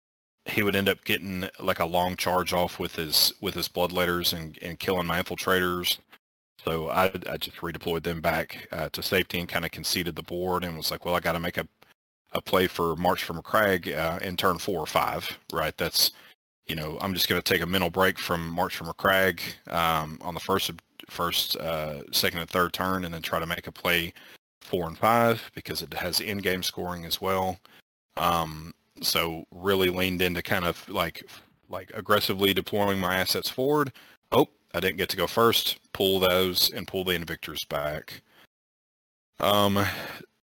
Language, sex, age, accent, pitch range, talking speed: English, male, 30-49, American, 85-95 Hz, 195 wpm